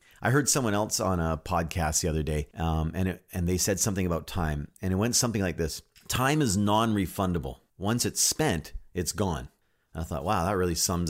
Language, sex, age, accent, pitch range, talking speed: English, male, 30-49, American, 80-100 Hz, 215 wpm